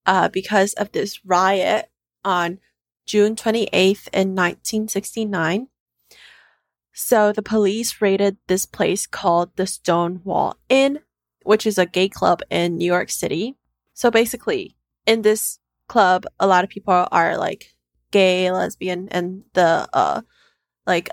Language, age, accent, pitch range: English, 20-39, American, 180-215 Hz